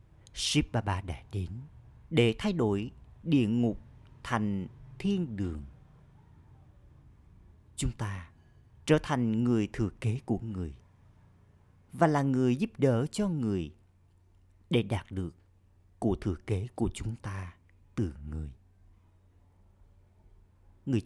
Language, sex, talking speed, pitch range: Vietnamese, male, 110 wpm, 95-120 Hz